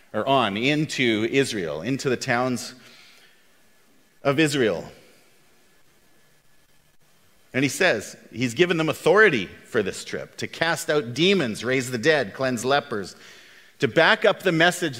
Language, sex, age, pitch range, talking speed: English, male, 40-59, 125-175 Hz, 130 wpm